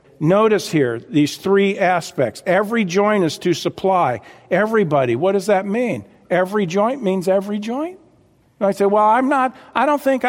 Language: English